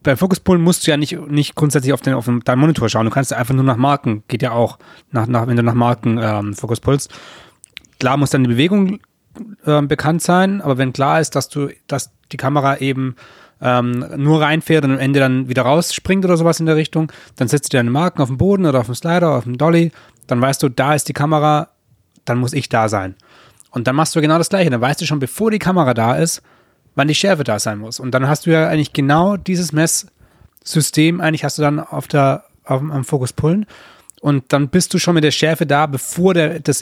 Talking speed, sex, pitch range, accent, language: 235 wpm, male, 125-155 Hz, German, German